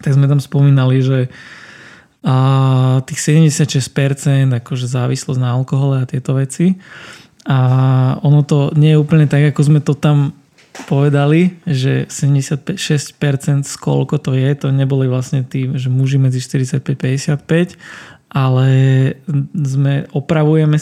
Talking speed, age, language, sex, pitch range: 125 wpm, 20-39, Slovak, male, 130-150 Hz